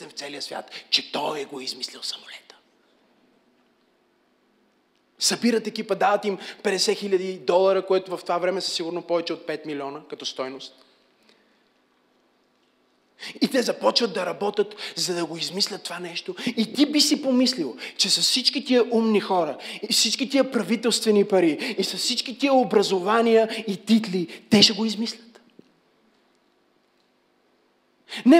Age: 30-49